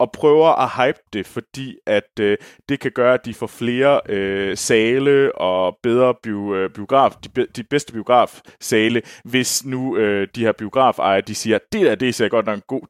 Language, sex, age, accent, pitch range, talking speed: Danish, male, 20-39, native, 105-135 Hz, 195 wpm